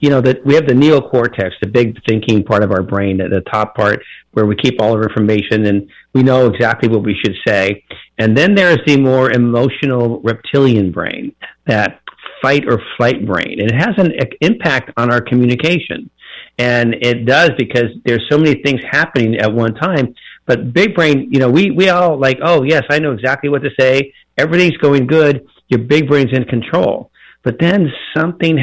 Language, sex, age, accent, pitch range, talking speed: English, male, 50-69, American, 115-145 Hz, 200 wpm